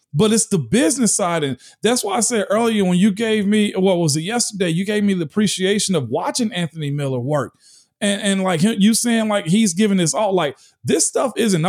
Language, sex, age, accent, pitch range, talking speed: English, male, 40-59, American, 165-215 Hz, 225 wpm